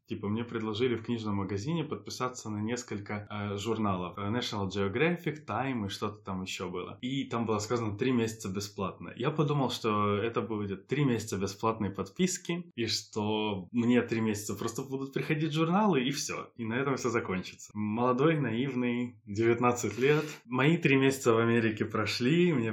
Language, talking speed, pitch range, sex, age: Russian, 165 wpm, 105-130 Hz, male, 20-39